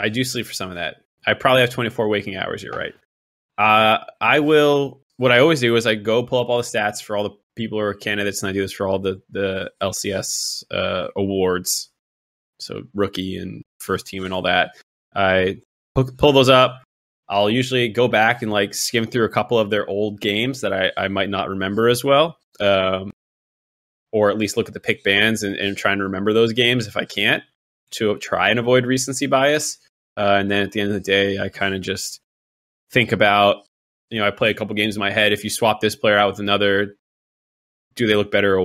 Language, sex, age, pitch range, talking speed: English, male, 20-39, 95-115 Hz, 225 wpm